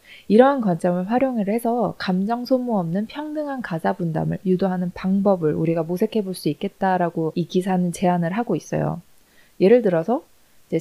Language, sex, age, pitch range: Korean, female, 20-39, 180-235 Hz